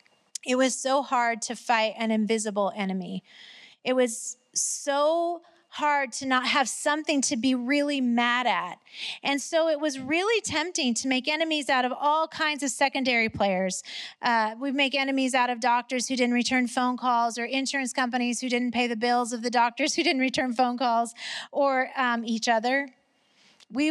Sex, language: female, English